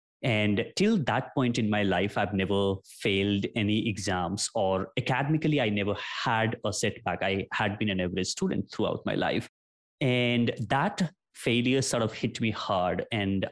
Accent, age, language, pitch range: Indian, 20-39, English, 100-125 Hz